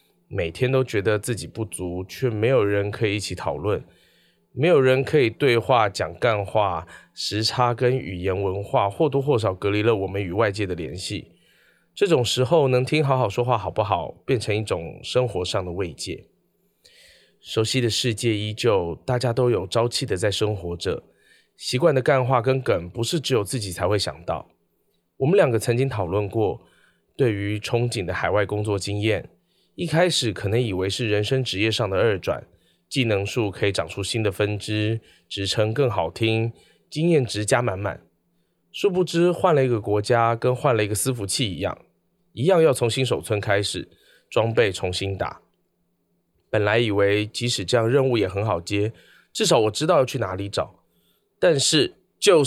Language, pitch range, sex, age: Chinese, 100-130 Hz, male, 20-39